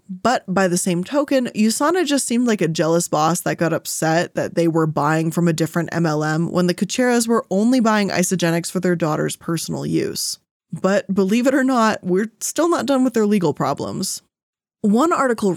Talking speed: 195 wpm